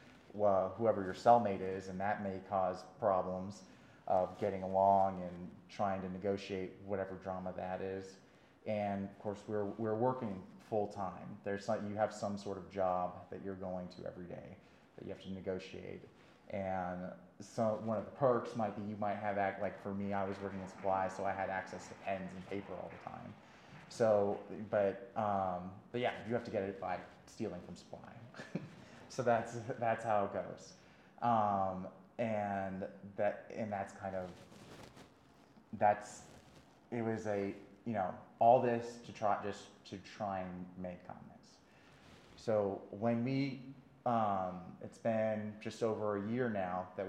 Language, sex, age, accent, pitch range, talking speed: English, male, 30-49, American, 95-110 Hz, 170 wpm